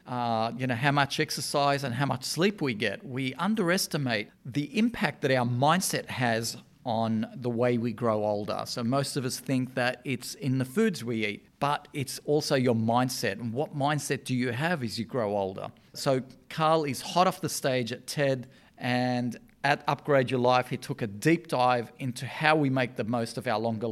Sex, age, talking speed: male, 40-59, 205 wpm